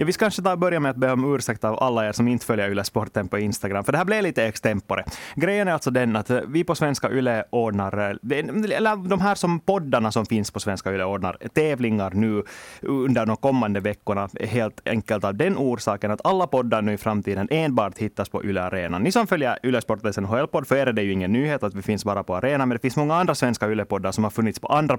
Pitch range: 100-130 Hz